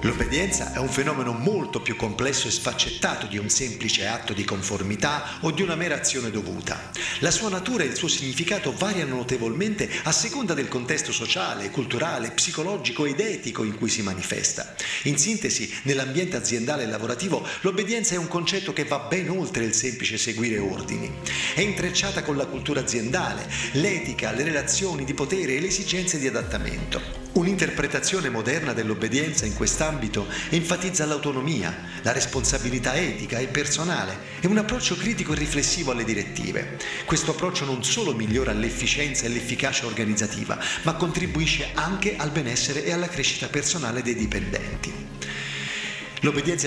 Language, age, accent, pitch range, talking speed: Italian, 40-59, native, 115-165 Hz, 150 wpm